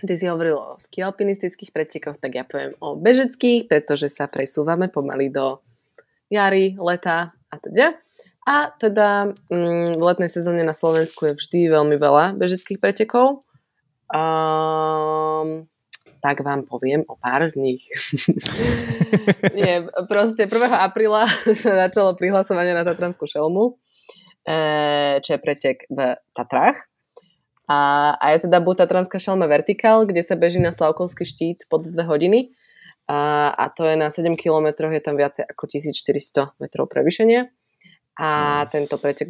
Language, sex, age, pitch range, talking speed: Slovak, female, 20-39, 150-190 Hz, 140 wpm